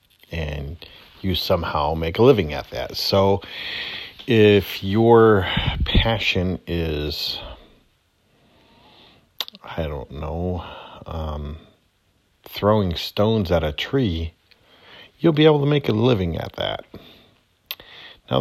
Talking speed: 105 wpm